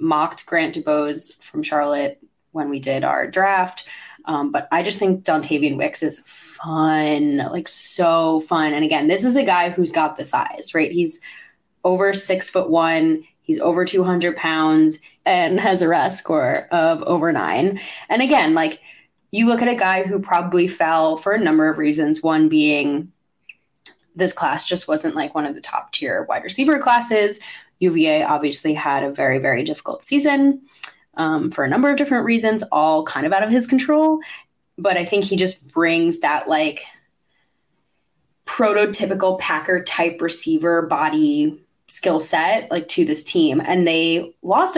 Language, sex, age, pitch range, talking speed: English, female, 20-39, 155-210 Hz, 170 wpm